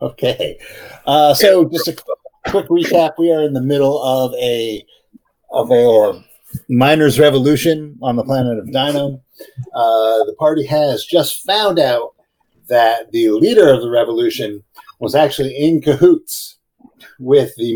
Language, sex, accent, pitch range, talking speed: English, male, American, 115-155 Hz, 140 wpm